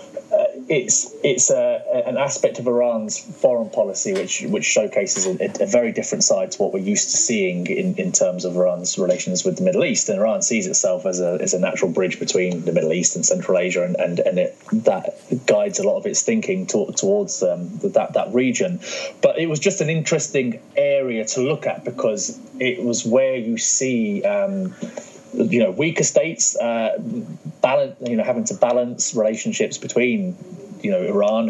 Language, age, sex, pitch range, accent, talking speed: English, 20-39, male, 130-210 Hz, British, 190 wpm